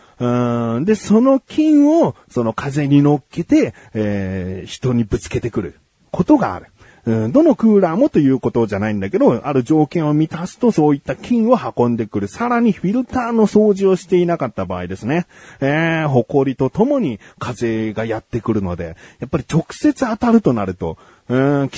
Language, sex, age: Japanese, male, 40-59